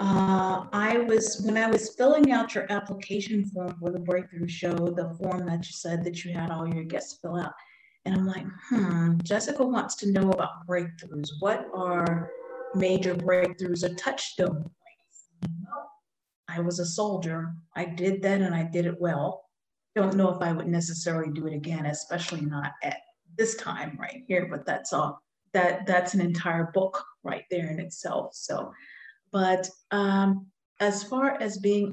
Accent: American